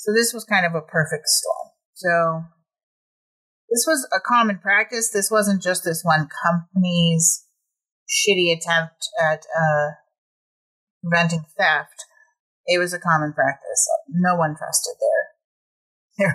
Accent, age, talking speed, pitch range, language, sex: American, 30-49, 130 wpm, 155-210 Hz, English, female